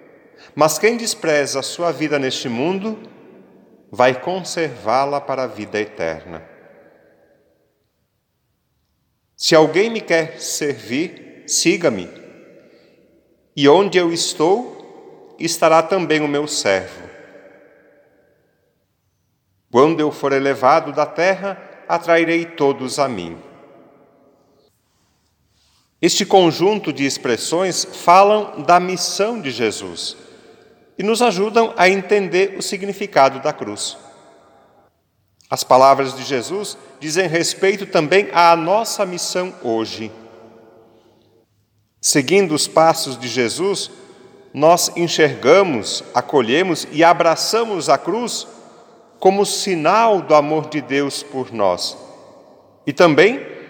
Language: Portuguese